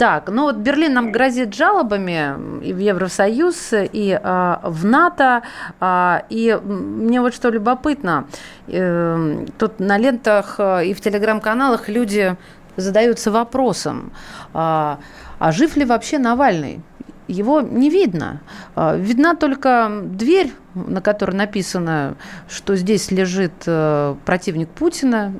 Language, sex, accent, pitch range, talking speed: Russian, female, native, 180-240 Hz, 125 wpm